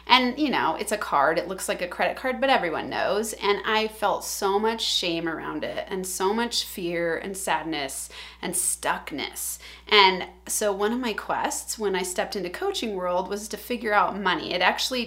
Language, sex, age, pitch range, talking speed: English, female, 30-49, 185-250 Hz, 200 wpm